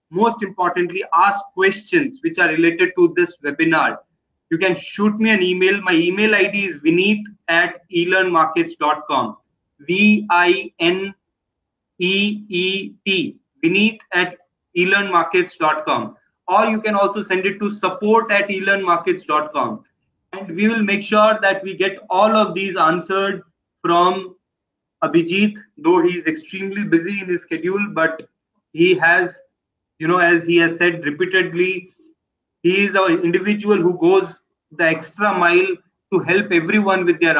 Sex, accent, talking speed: male, native, 130 wpm